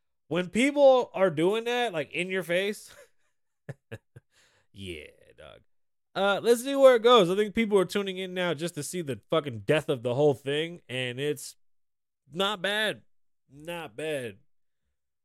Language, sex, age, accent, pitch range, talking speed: English, male, 20-39, American, 115-175 Hz, 155 wpm